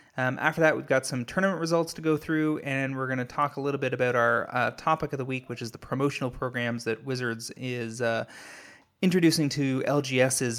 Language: English